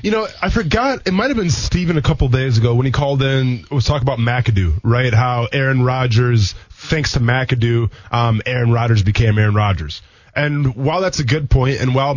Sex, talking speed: male, 205 wpm